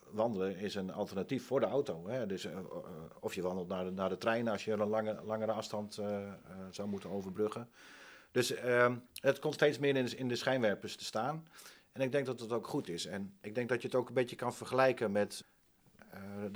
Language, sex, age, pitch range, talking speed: Dutch, male, 40-59, 95-120 Hz, 230 wpm